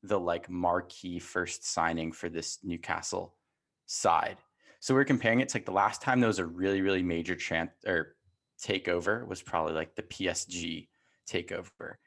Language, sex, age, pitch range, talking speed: English, male, 20-39, 90-110 Hz, 165 wpm